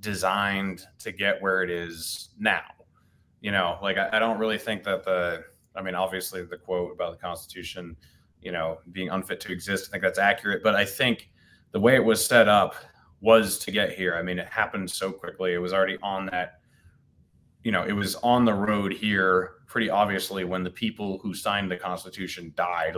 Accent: American